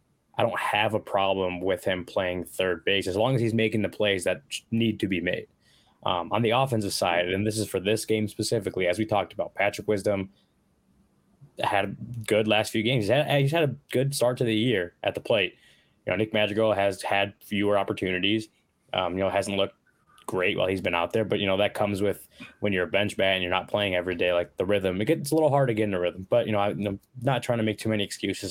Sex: male